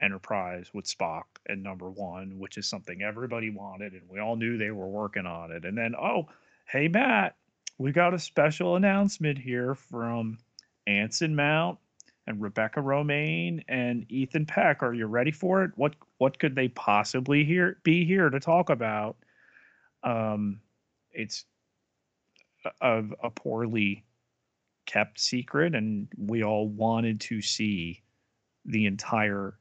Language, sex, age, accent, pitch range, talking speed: English, male, 30-49, American, 100-130 Hz, 145 wpm